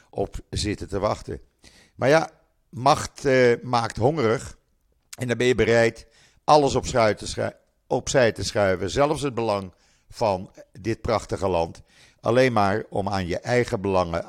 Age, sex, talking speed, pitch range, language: 50-69, male, 140 wpm, 95-125 Hz, Dutch